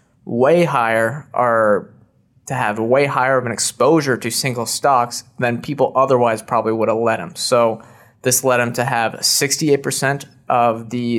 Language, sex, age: English, male, 20-39